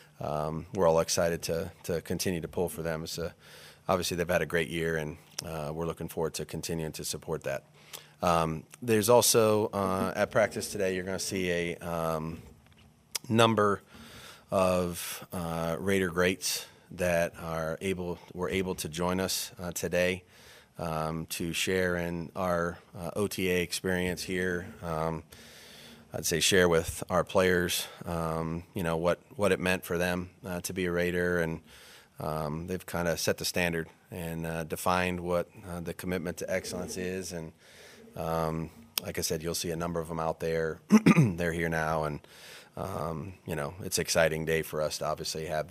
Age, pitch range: 30-49, 80-90 Hz